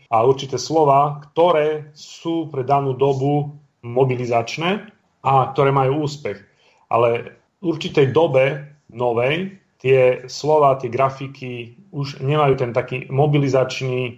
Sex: male